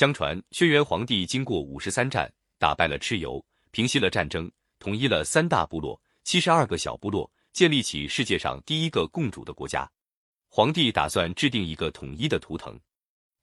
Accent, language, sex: native, Chinese, male